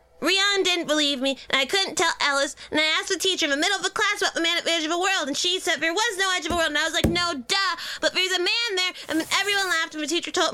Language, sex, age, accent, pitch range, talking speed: English, female, 20-39, American, 290-380 Hz, 330 wpm